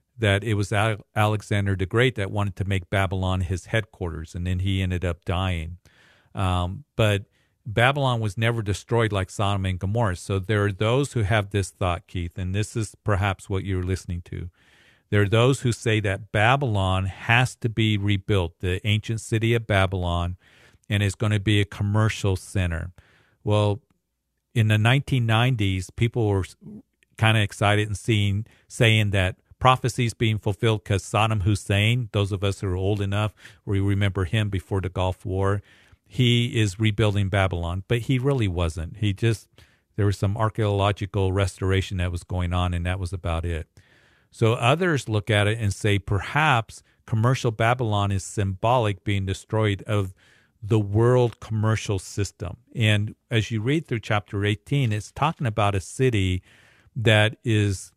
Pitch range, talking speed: 95-115 Hz, 165 wpm